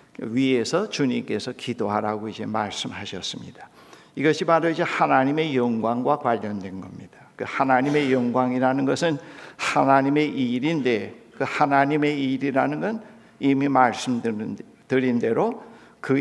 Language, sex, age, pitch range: Korean, male, 60-79, 115-150 Hz